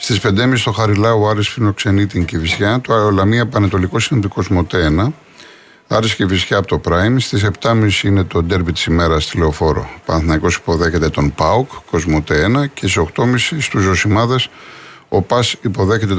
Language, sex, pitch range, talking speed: Greek, male, 85-110 Hz, 150 wpm